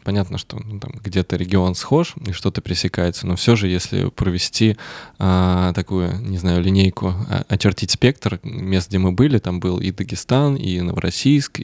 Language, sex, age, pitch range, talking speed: Russian, male, 20-39, 90-110 Hz, 170 wpm